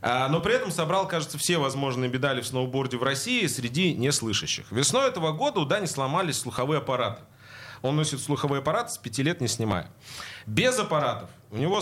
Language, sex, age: Russian, male, 30-49